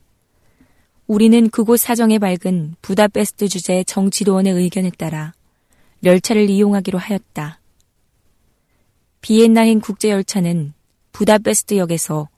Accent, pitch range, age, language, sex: native, 170-215 Hz, 20-39, Korean, female